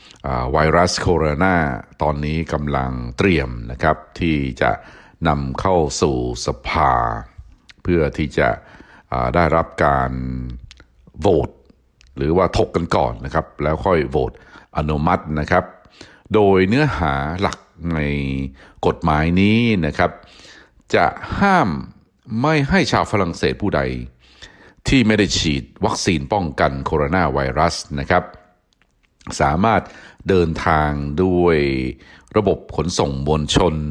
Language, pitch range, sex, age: Thai, 65-90 Hz, male, 60-79